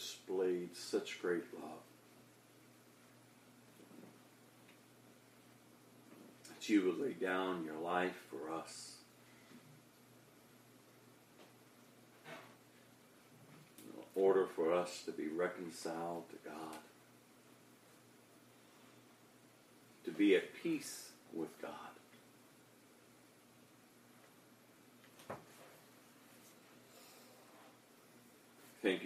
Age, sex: 50-69, male